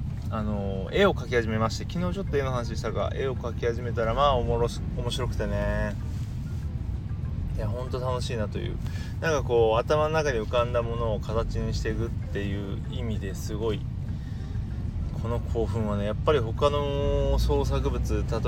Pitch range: 100-120 Hz